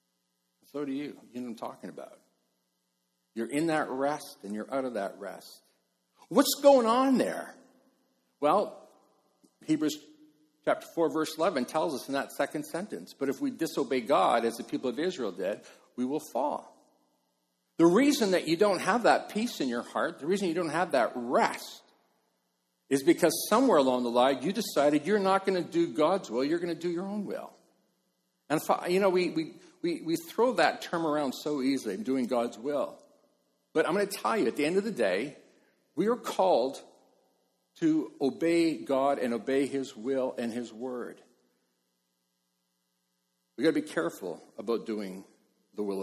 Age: 50-69